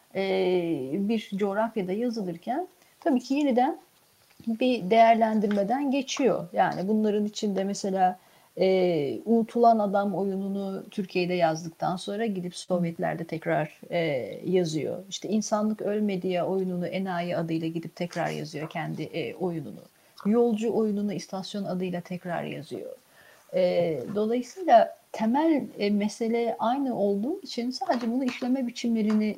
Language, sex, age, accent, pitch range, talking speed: Turkish, female, 40-59, native, 185-255 Hz, 110 wpm